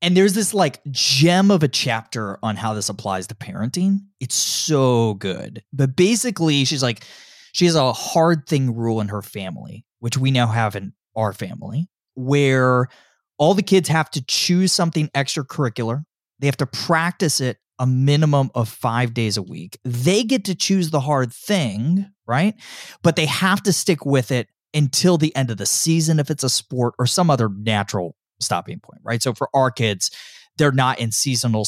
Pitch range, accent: 115-170 Hz, American